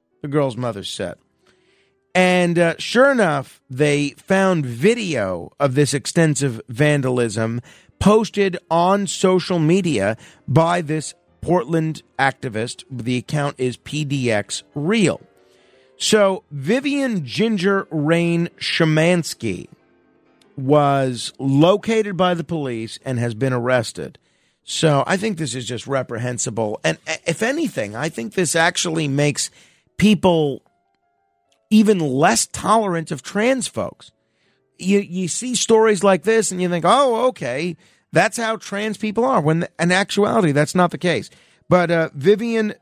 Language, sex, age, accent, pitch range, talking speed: English, male, 40-59, American, 140-205 Hz, 125 wpm